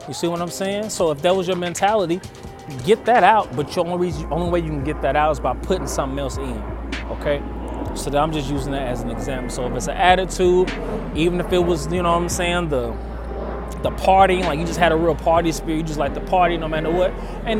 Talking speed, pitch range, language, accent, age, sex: 255 wpm, 135-175 Hz, English, American, 20-39, male